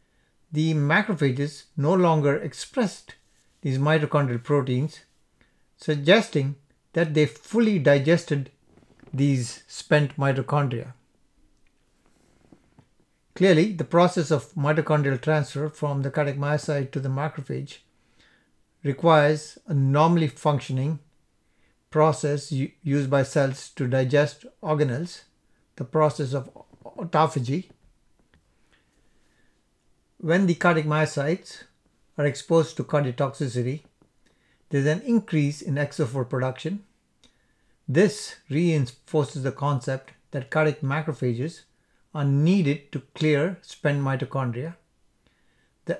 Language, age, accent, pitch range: English, 60-79, Indian, 140-160 Hz